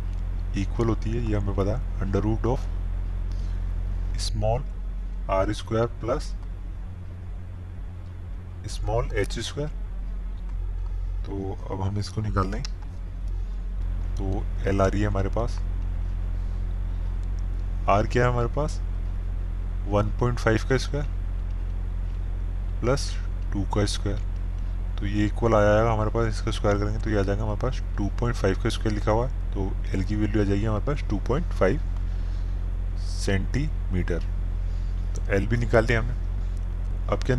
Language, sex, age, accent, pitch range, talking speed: Hindi, male, 20-39, native, 90-105 Hz, 135 wpm